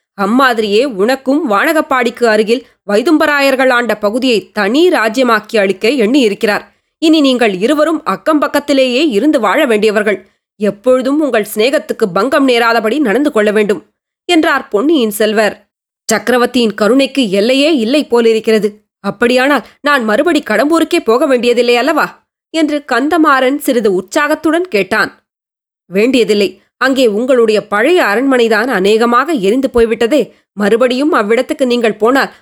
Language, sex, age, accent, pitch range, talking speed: Tamil, female, 20-39, native, 215-275 Hz, 105 wpm